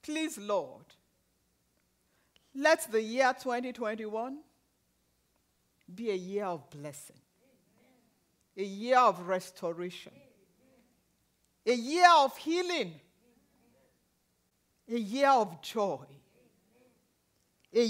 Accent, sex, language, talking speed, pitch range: Nigerian, female, English, 80 wpm, 190-320 Hz